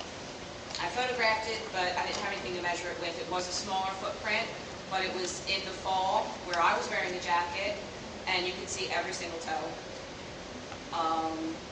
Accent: American